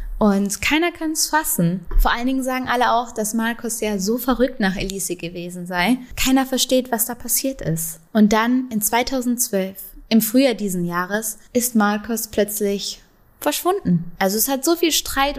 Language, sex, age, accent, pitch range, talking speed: German, female, 20-39, German, 200-245 Hz, 170 wpm